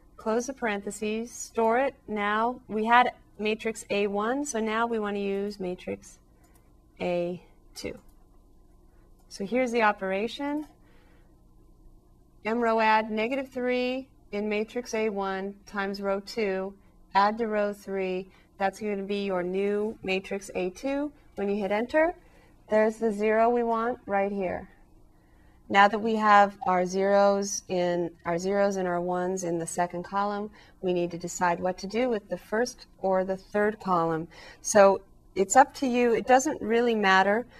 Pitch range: 185-225 Hz